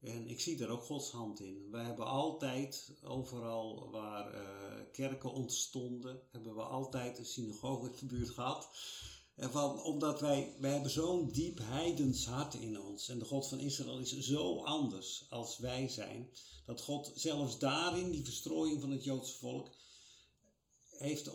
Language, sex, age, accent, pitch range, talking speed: Dutch, male, 50-69, Dutch, 120-145 Hz, 160 wpm